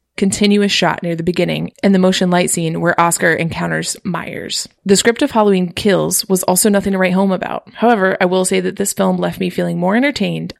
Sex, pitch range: female, 175-200 Hz